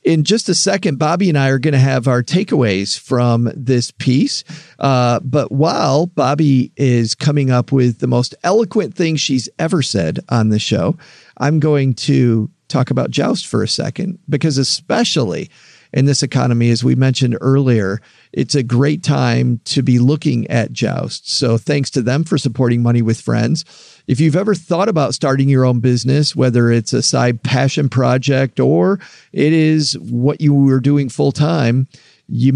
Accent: American